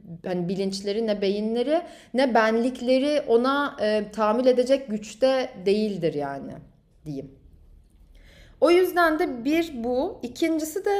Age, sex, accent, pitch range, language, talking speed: 30-49, female, native, 200-265 Hz, Turkish, 120 wpm